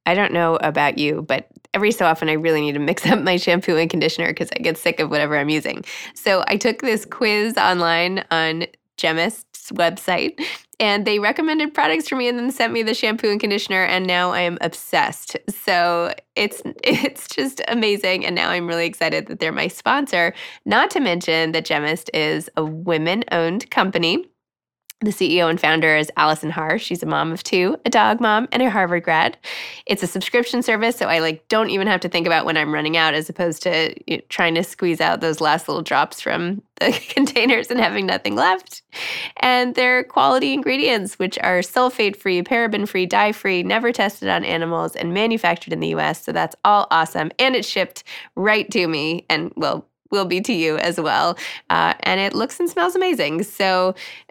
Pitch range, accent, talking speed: 165-220 Hz, American, 195 wpm